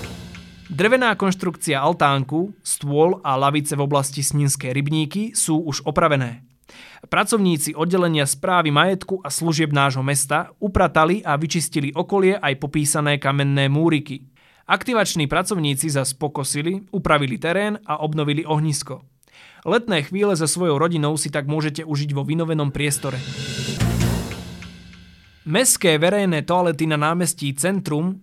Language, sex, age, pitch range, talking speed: Slovak, male, 20-39, 140-175 Hz, 115 wpm